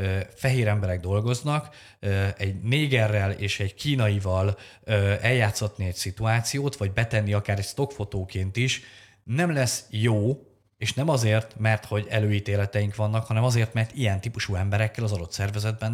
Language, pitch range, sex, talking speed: Hungarian, 100-115 Hz, male, 135 wpm